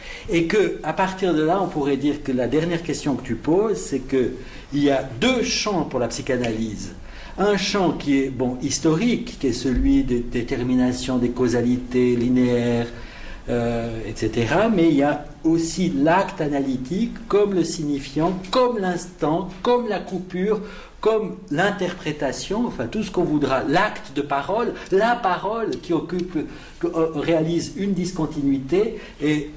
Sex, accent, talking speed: male, French, 150 wpm